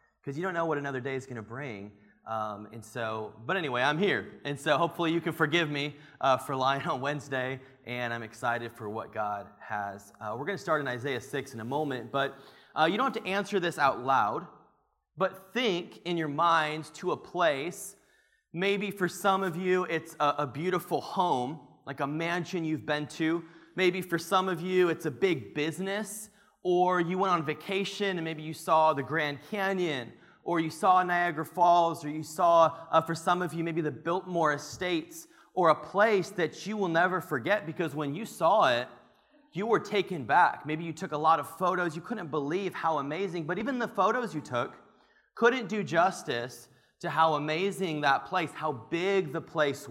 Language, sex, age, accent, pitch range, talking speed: English, male, 30-49, American, 145-185 Hz, 200 wpm